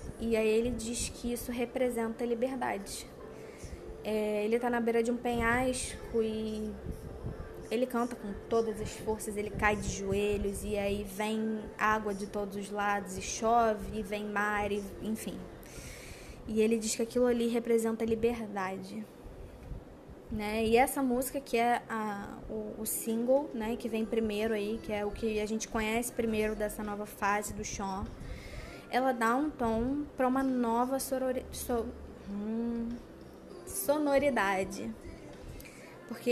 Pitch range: 215-240 Hz